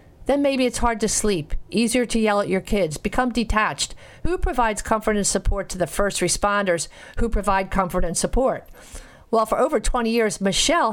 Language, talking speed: English, 185 wpm